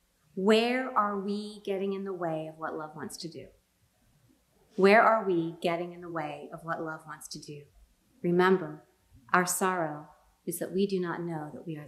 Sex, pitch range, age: female, 165-205 Hz, 30-49